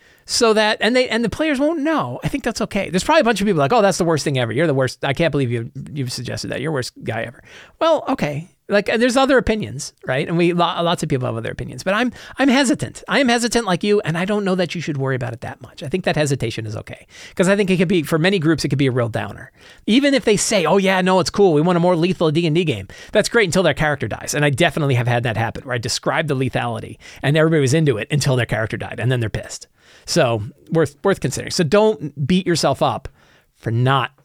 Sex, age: male, 40-59